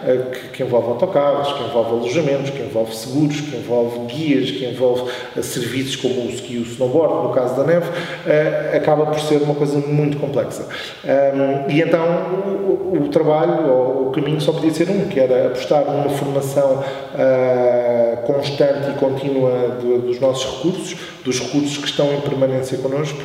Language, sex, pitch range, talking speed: Portuguese, male, 130-150 Hz, 160 wpm